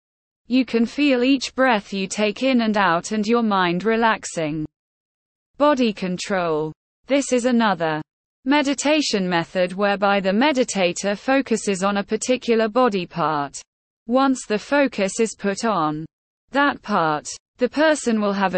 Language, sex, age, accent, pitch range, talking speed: English, female, 20-39, British, 185-250 Hz, 135 wpm